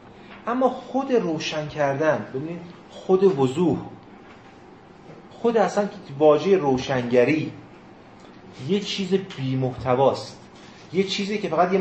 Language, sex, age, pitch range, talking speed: Persian, male, 30-49, 130-195 Hz, 95 wpm